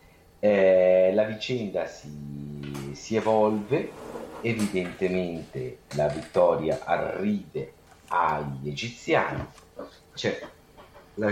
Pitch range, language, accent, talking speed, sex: 80-105 Hz, Italian, native, 75 wpm, male